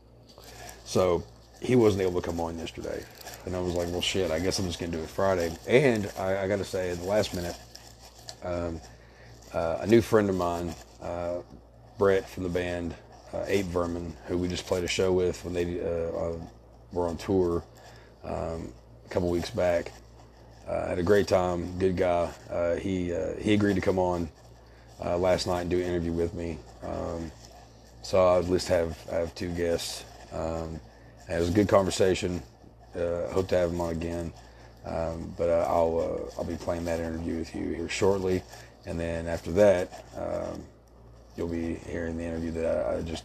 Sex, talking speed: male, 190 wpm